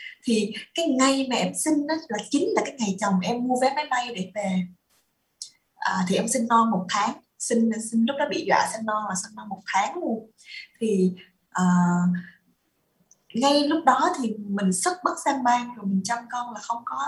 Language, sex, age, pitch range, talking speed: Vietnamese, female, 20-39, 200-270 Hz, 205 wpm